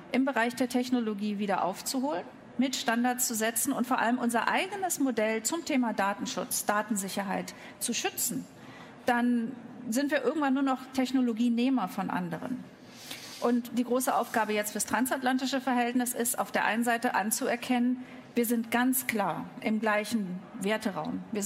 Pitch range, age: 215-255 Hz, 40-59